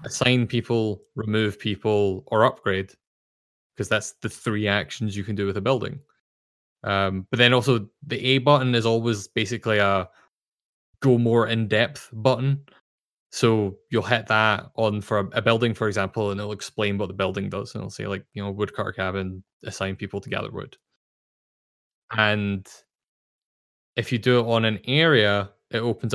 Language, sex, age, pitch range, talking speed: English, male, 20-39, 100-120 Hz, 170 wpm